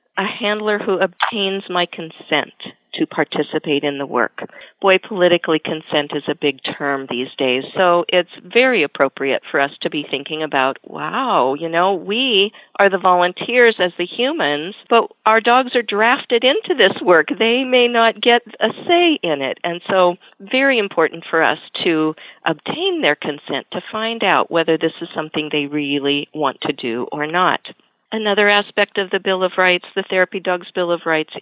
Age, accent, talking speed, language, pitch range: 50-69, American, 180 wpm, English, 150-205 Hz